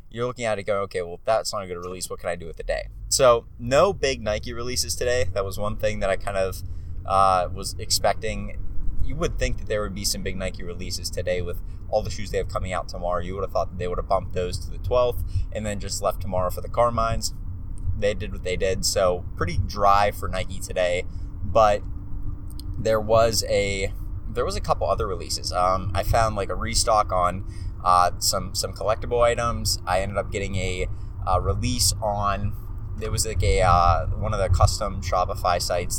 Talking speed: 220 wpm